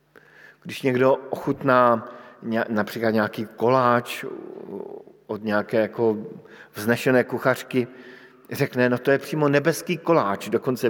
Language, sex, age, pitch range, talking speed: Slovak, male, 50-69, 120-155 Hz, 100 wpm